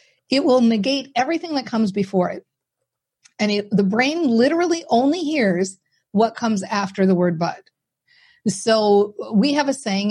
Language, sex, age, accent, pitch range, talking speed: English, female, 50-69, American, 190-240 Hz, 150 wpm